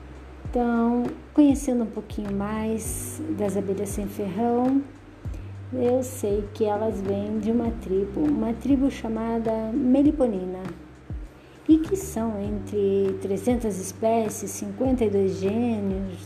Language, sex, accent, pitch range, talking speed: Portuguese, female, Brazilian, 185-230 Hz, 105 wpm